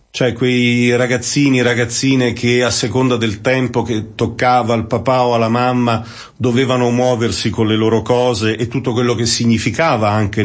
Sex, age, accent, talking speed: male, 40-59, native, 165 wpm